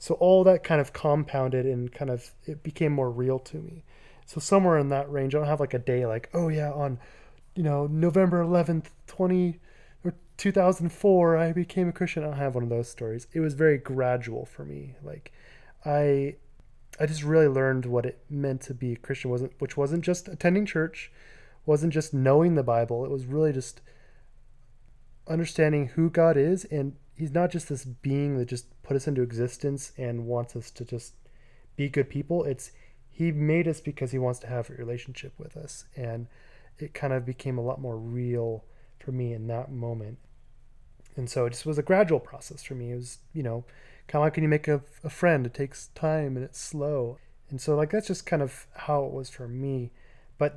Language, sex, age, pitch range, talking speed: English, male, 20-39, 125-155 Hz, 210 wpm